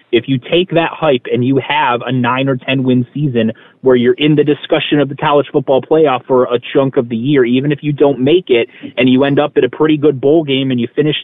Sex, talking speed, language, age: male, 260 wpm, English, 30-49